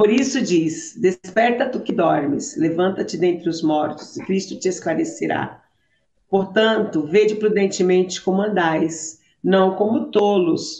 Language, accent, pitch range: Portuguese, Brazilian, 180-235 Hz